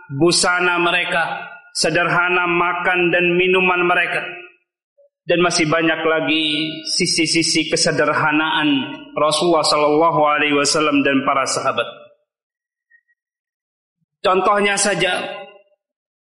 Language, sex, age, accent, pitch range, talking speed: Indonesian, male, 30-49, native, 160-195 Hz, 80 wpm